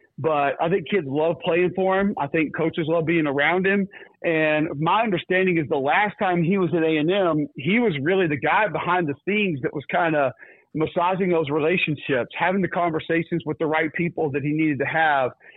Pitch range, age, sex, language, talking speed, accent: 155-185 Hz, 40-59, male, English, 205 wpm, American